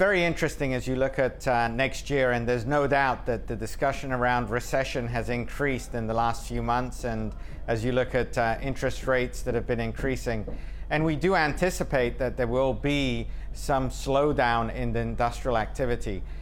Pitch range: 115-135 Hz